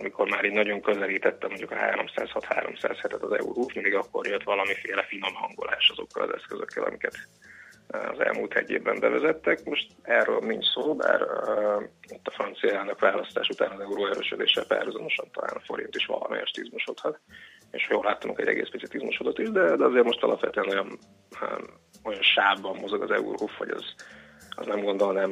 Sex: male